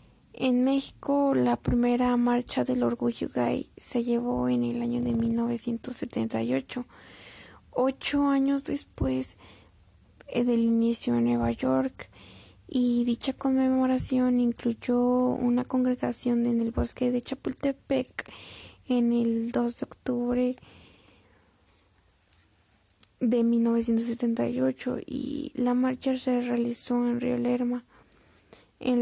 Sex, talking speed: female, 105 wpm